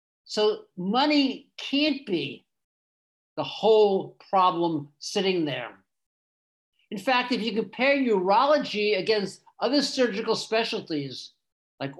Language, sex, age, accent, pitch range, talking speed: English, male, 50-69, American, 175-240 Hz, 100 wpm